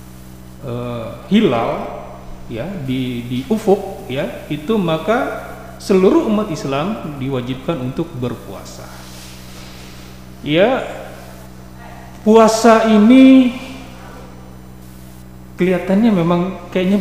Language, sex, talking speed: Indonesian, male, 70 wpm